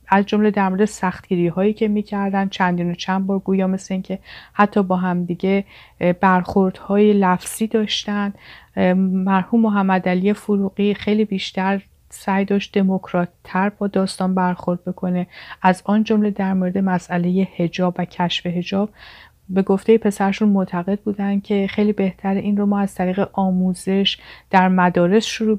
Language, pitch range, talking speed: Persian, 185-205 Hz, 145 wpm